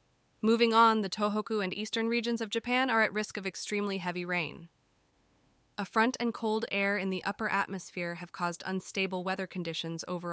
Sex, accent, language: female, American, English